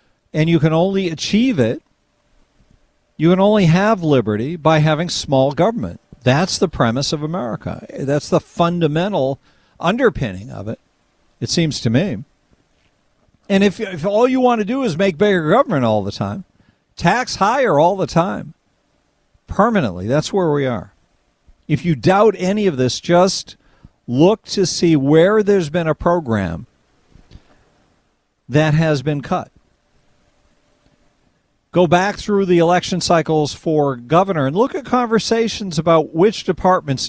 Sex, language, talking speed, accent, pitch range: male, English, 145 wpm, American, 135-190 Hz